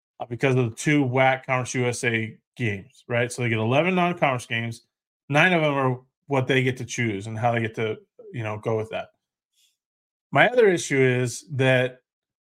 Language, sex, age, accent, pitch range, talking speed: English, male, 20-39, American, 120-155 Hz, 190 wpm